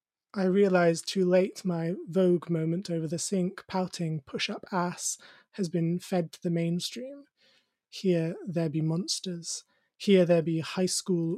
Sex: male